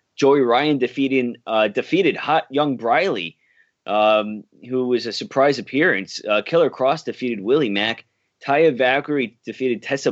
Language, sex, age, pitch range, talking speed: English, male, 20-39, 115-140 Hz, 140 wpm